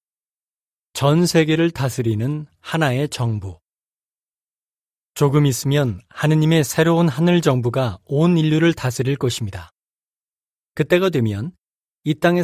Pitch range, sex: 125-160 Hz, male